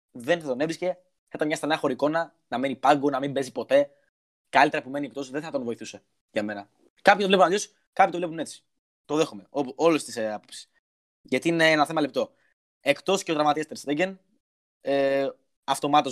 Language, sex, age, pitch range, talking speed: Greek, male, 20-39, 125-160 Hz, 185 wpm